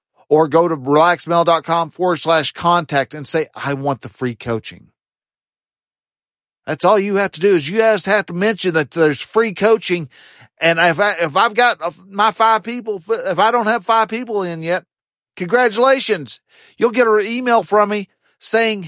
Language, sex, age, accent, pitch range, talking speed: English, male, 40-59, American, 125-195 Hz, 175 wpm